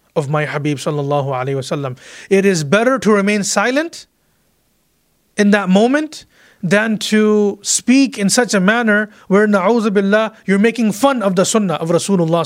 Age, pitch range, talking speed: 30-49, 165-210 Hz, 155 wpm